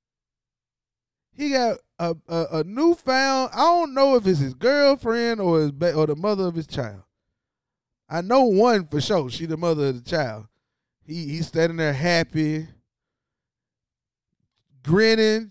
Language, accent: English, American